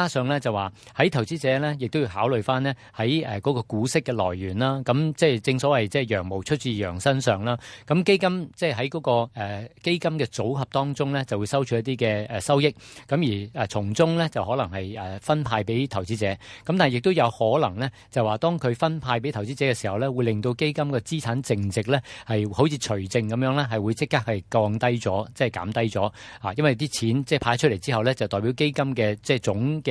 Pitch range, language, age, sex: 110-145 Hz, Chinese, 50-69, male